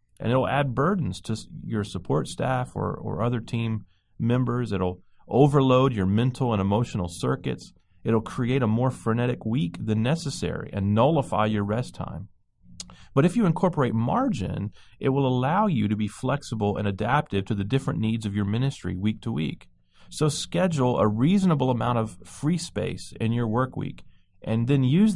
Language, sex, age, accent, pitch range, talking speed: English, male, 30-49, American, 105-135 Hz, 170 wpm